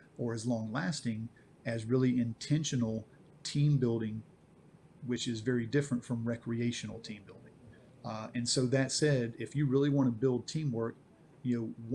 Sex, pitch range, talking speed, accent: male, 115-135 Hz, 150 wpm, American